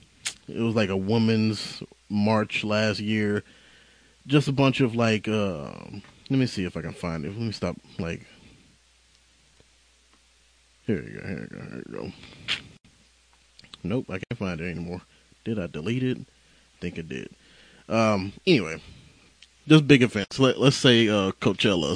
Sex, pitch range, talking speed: male, 95-115 Hz, 165 wpm